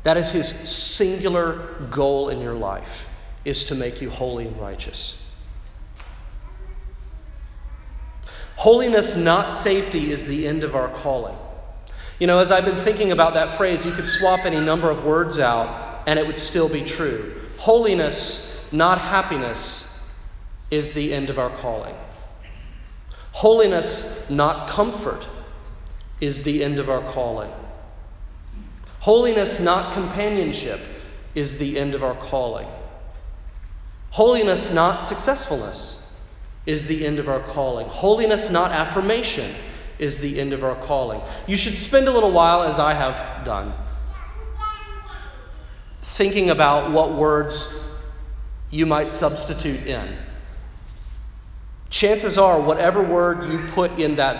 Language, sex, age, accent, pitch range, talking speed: English, male, 40-59, American, 105-175 Hz, 130 wpm